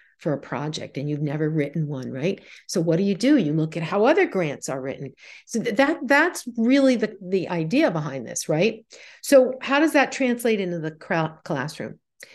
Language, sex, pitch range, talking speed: English, female, 155-205 Hz, 195 wpm